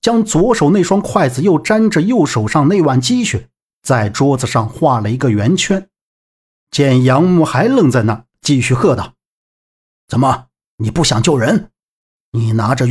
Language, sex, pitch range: Chinese, male, 120-175 Hz